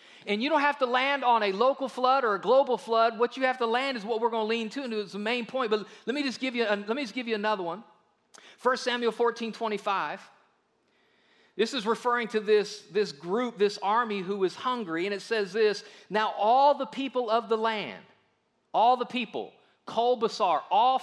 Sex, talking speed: male, 220 wpm